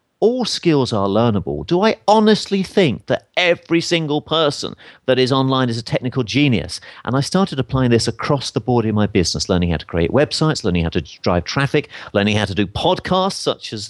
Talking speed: 205 wpm